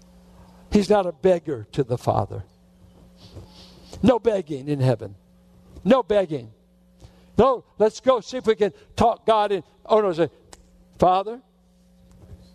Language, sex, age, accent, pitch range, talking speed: English, male, 60-79, American, 135-195 Hz, 130 wpm